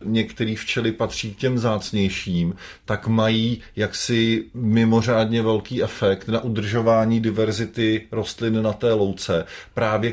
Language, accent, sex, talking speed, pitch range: Czech, native, male, 120 wpm, 95-110 Hz